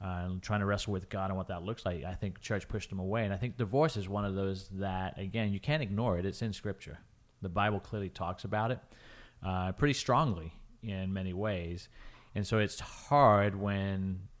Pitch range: 90-110 Hz